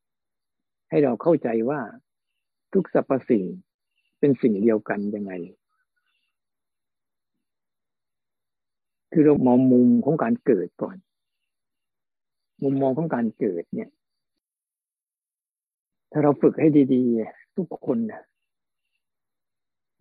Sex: male